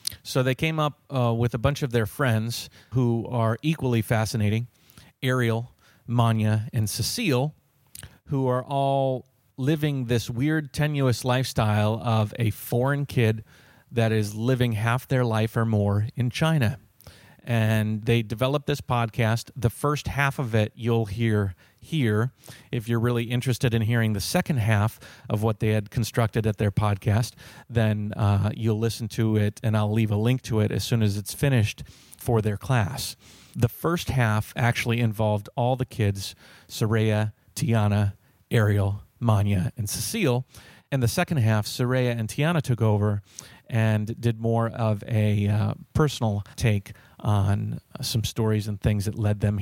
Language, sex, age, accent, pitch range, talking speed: English, male, 40-59, American, 105-125 Hz, 165 wpm